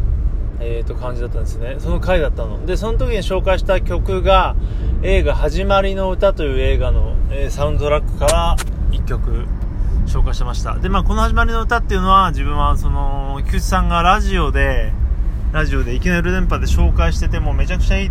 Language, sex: Japanese, male